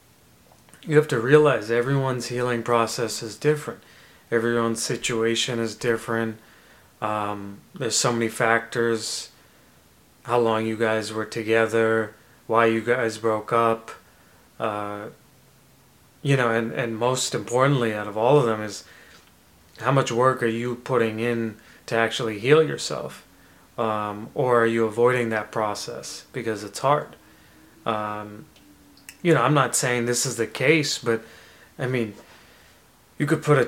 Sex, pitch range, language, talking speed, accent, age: male, 110-130 Hz, English, 140 wpm, American, 30-49